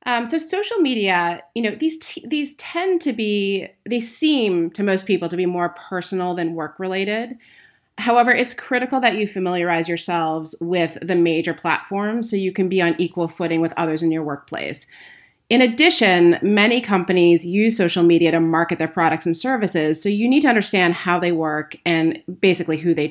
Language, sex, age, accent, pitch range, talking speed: English, female, 30-49, American, 165-215 Hz, 180 wpm